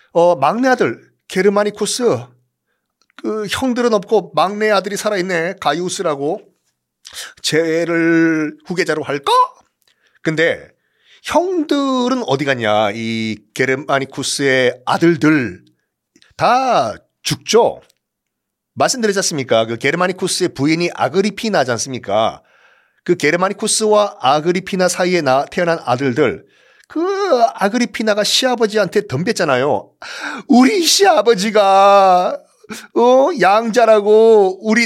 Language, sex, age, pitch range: Korean, male, 40-59, 150-240 Hz